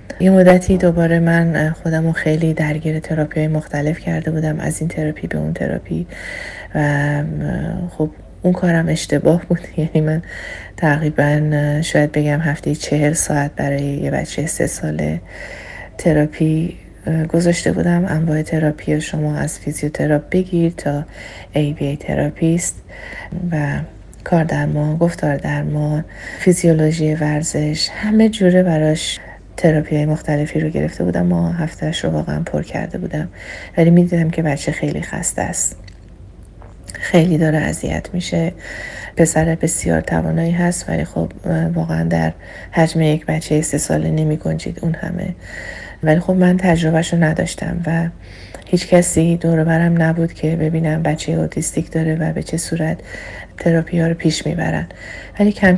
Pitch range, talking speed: 150-170 Hz, 135 wpm